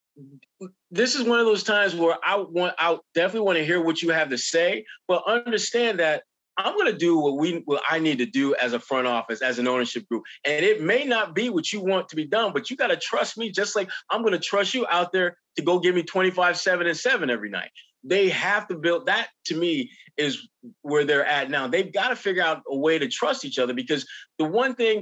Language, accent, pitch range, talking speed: English, American, 170-260 Hz, 250 wpm